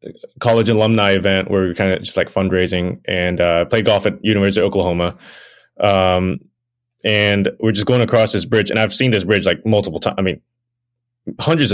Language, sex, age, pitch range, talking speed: English, male, 20-39, 100-120 Hz, 200 wpm